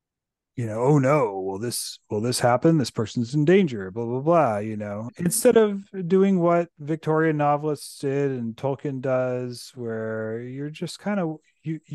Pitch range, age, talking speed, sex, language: 115-155 Hz, 30-49, 170 wpm, male, English